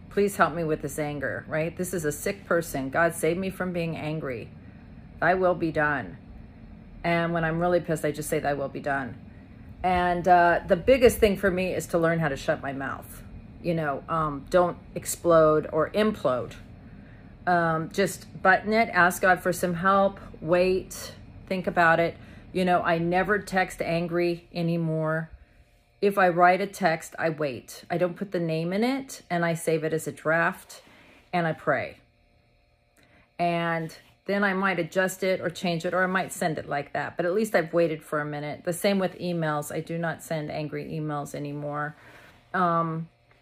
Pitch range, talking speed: 150-180 Hz, 190 wpm